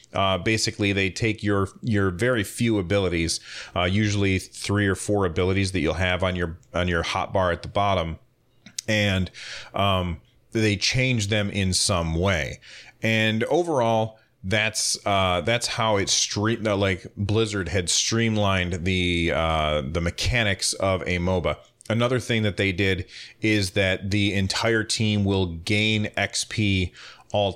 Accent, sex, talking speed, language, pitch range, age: American, male, 150 wpm, English, 90-110 Hz, 30-49